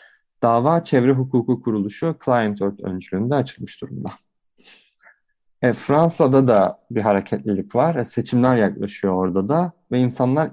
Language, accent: Turkish, native